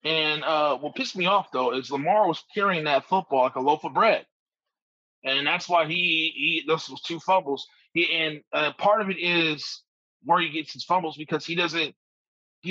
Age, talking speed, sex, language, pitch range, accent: 20-39, 205 wpm, male, English, 145-185 Hz, American